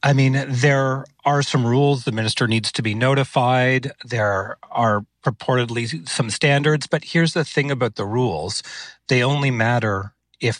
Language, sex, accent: English, male, American